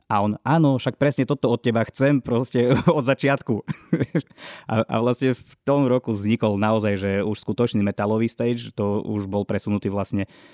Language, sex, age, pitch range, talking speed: Slovak, male, 20-39, 100-115 Hz, 165 wpm